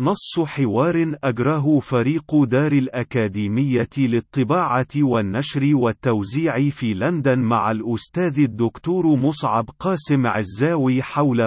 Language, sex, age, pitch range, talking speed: Arabic, male, 40-59, 115-145 Hz, 95 wpm